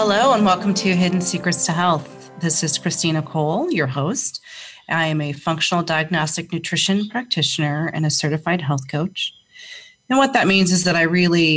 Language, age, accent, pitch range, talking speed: English, 30-49, American, 155-195 Hz, 175 wpm